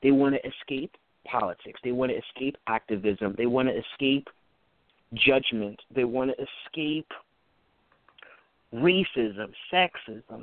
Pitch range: 110-145 Hz